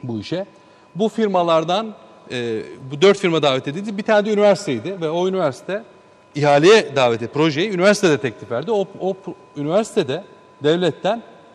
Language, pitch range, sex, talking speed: Turkish, 145-195 Hz, male, 145 wpm